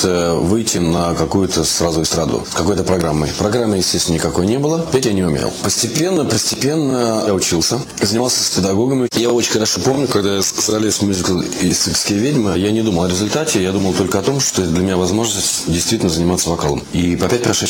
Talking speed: 185 wpm